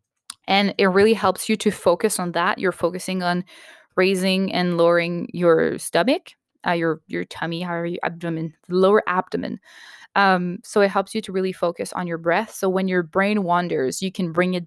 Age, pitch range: 20-39, 180-235 Hz